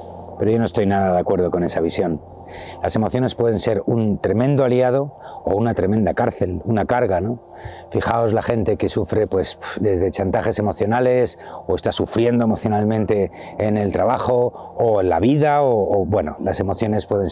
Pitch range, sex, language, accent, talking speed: 95-120 Hz, male, Spanish, Spanish, 175 wpm